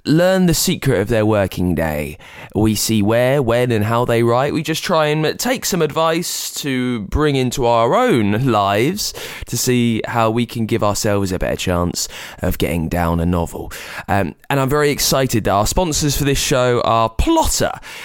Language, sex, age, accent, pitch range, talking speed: English, male, 20-39, British, 100-140 Hz, 185 wpm